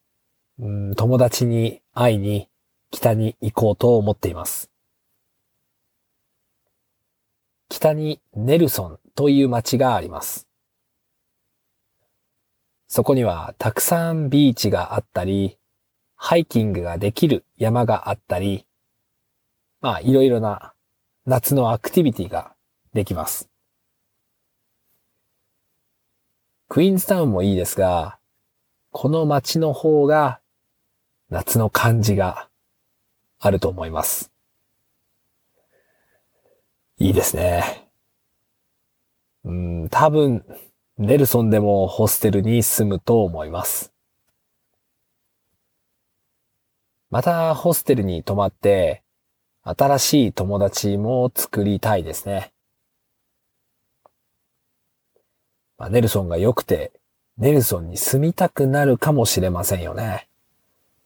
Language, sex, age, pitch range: English, male, 40-59, 100-135 Hz